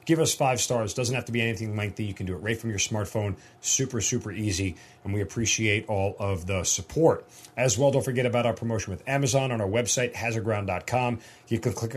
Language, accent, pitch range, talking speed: English, American, 100-125 Hz, 220 wpm